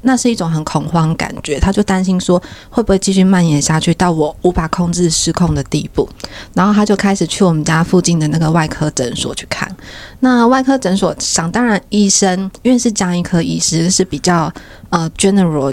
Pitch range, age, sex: 160-205 Hz, 20-39, female